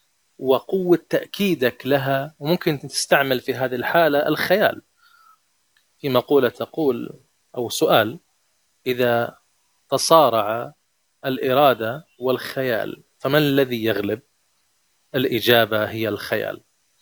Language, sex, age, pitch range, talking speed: Arabic, male, 30-49, 125-155 Hz, 85 wpm